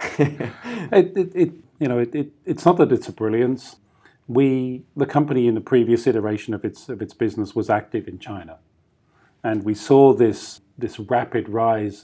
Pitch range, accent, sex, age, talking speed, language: 105-125 Hz, British, male, 40-59, 180 wpm, English